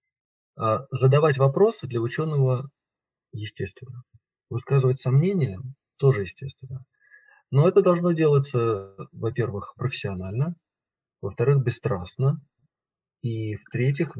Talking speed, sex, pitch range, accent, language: 80 wpm, male, 115-140 Hz, native, Russian